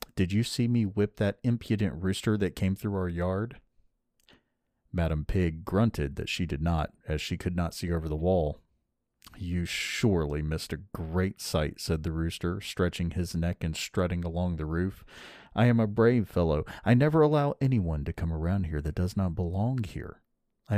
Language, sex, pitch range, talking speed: English, male, 80-105 Hz, 185 wpm